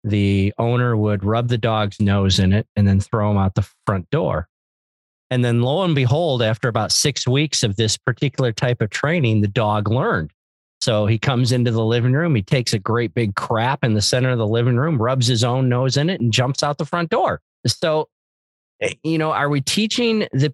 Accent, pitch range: American, 105-130 Hz